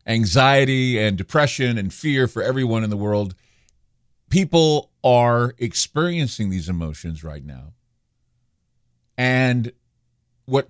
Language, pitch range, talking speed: English, 95-130 Hz, 105 wpm